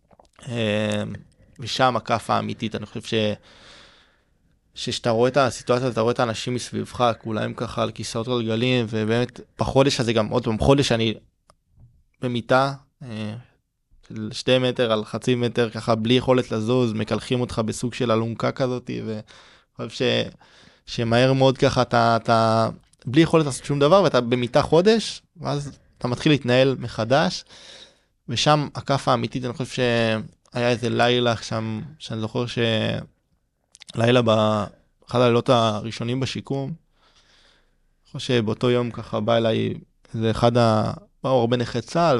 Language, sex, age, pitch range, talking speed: Hebrew, male, 20-39, 110-130 Hz, 140 wpm